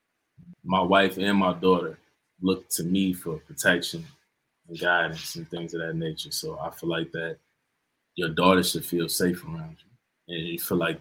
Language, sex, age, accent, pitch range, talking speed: English, male, 20-39, American, 85-100 Hz, 180 wpm